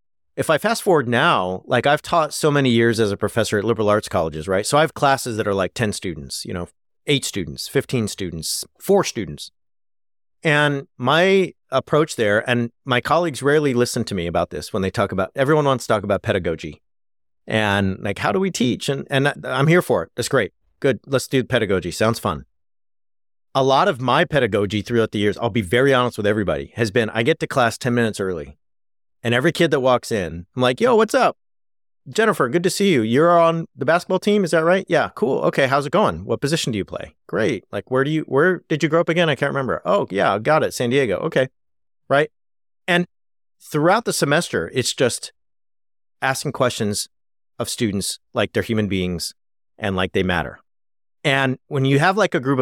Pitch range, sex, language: 100-145 Hz, male, English